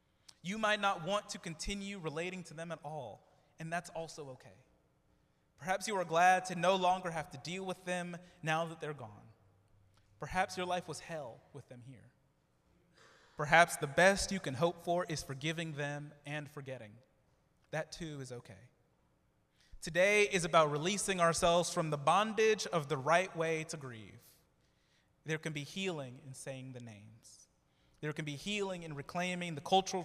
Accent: American